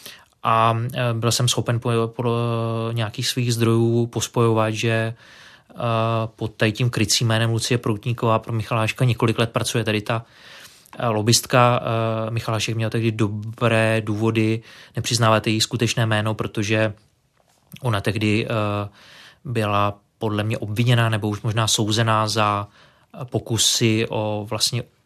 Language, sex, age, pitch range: Czech, male, 20-39, 110-120 Hz